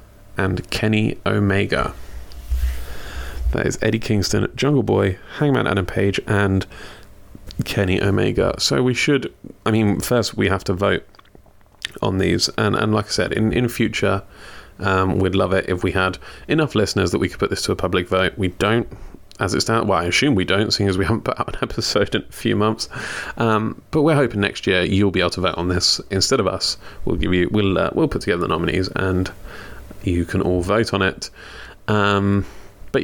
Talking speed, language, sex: 200 wpm, English, male